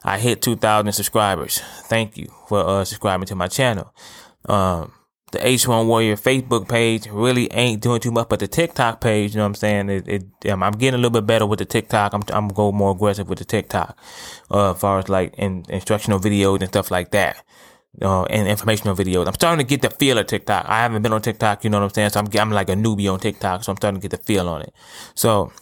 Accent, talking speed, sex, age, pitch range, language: American, 245 wpm, male, 20-39, 100-115 Hz, English